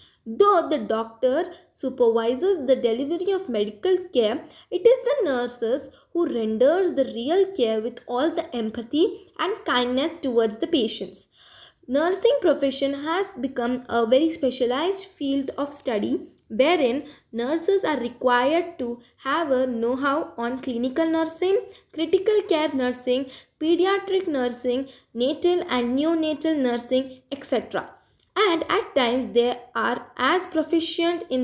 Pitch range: 245-335 Hz